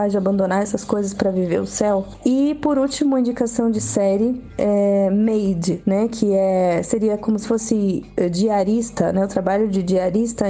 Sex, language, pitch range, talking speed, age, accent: female, Portuguese, 200-235 Hz, 170 wpm, 20-39, Brazilian